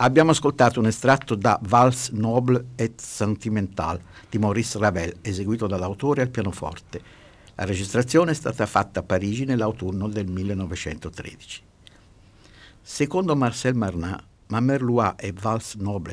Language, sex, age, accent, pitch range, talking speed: Italian, male, 60-79, native, 100-130 Hz, 125 wpm